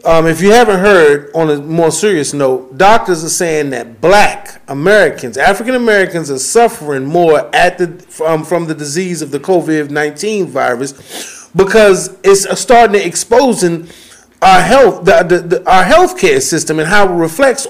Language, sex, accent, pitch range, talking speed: English, male, American, 160-205 Hz, 165 wpm